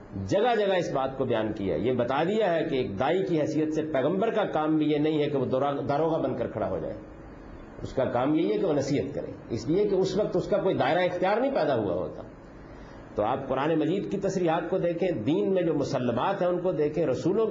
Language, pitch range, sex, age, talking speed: Urdu, 135-180 Hz, male, 50-69, 250 wpm